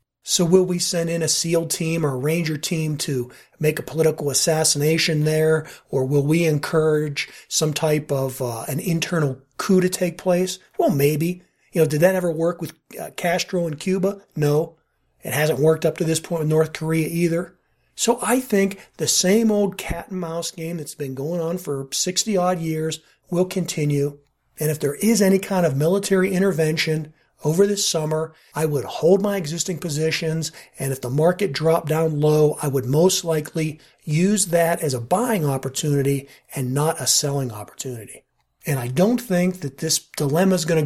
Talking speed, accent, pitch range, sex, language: 180 wpm, American, 150-180 Hz, male, English